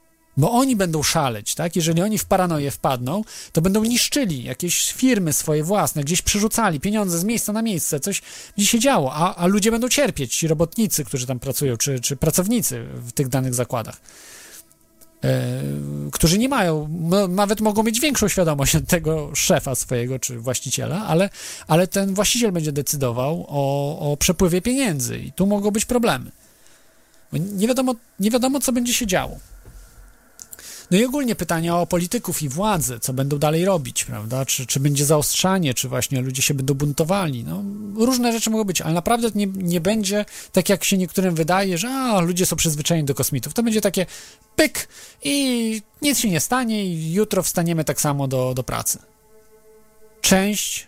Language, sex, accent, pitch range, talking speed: Polish, male, native, 150-220 Hz, 170 wpm